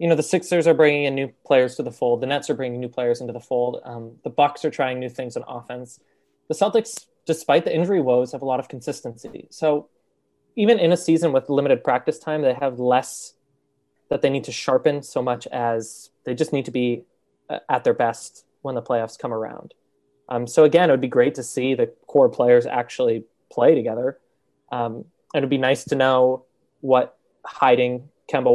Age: 20-39